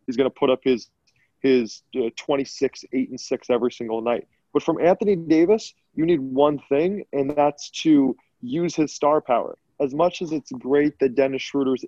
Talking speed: 190 wpm